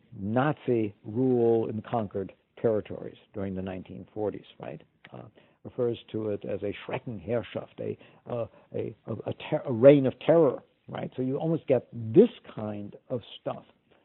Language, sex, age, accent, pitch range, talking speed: English, male, 60-79, American, 115-165 Hz, 150 wpm